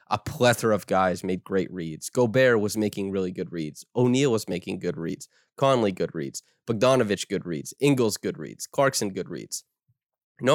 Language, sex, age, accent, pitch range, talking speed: English, male, 20-39, American, 105-130 Hz, 180 wpm